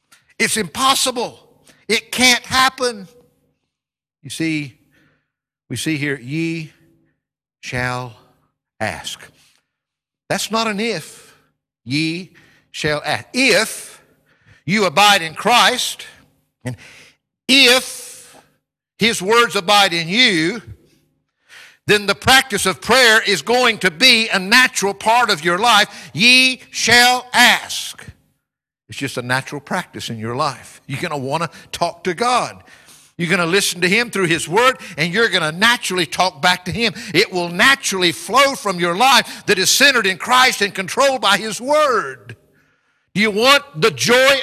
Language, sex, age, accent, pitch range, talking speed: English, male, 60-79, American, 140-230 Hz, 140 wpm